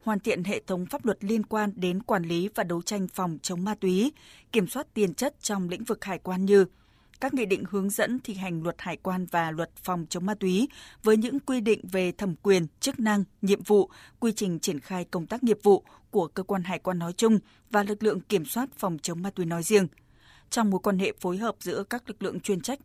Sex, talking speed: female, 245 wpm